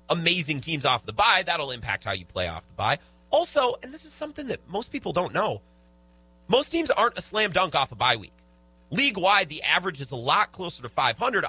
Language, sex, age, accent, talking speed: English, male, 30-49, American, 220 wpm